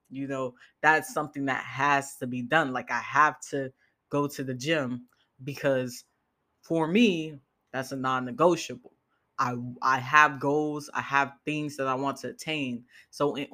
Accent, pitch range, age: American, 130-145 Hz, 10-29